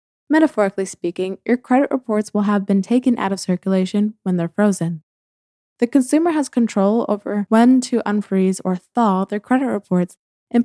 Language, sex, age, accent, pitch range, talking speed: English, female, 20-39, American, 185-235 Hz, 165 wpm